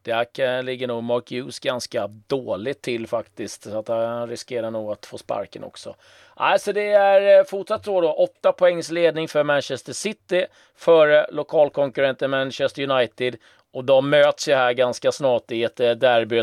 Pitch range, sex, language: 120-155 Hz, male, Swedish